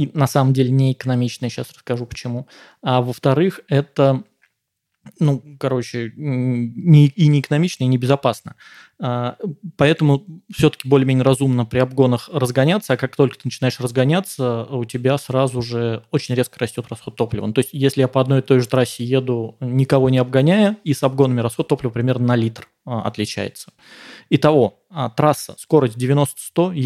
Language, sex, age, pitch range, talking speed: Russian, male, 20-39, 115-140 Hz, 155 wpm